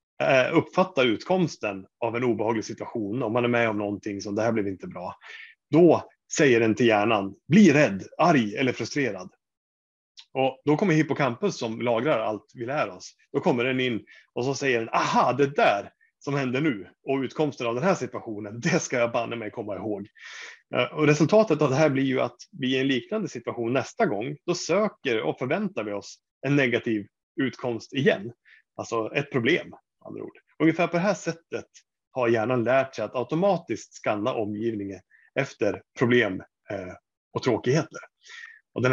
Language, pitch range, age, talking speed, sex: Swedish, 110-145 Hz, 30-49, 175 wpm, male